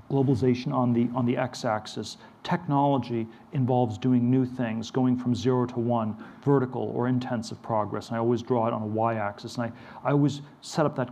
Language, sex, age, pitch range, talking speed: English, male, 40-59, 115-130 Hz, 195 wpm